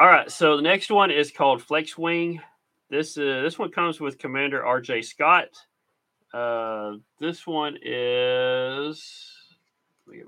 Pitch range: 115-145 Hz